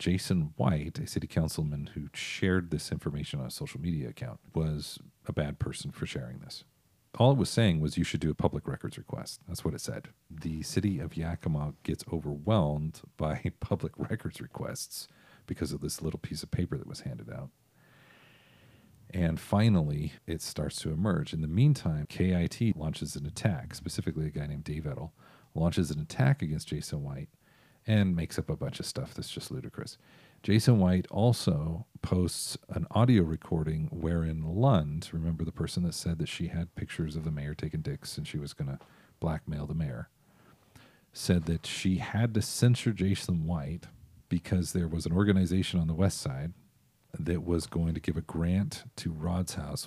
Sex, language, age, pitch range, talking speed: male, English, 40-59, 80-100 Hz, 180 wpm